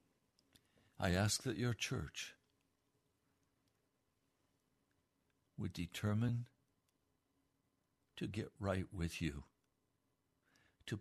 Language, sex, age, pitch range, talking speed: English, male, 60-79, 90-120 Hz, 70 wpm